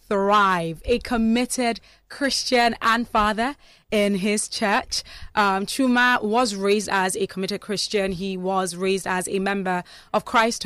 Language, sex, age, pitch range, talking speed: English, female, 20-39, 195-250 Hz, 140 wpm